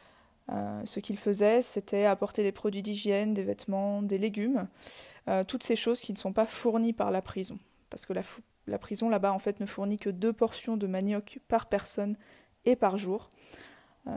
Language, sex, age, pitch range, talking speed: French, female, 20-39, 185-220 Hz, 185 wpm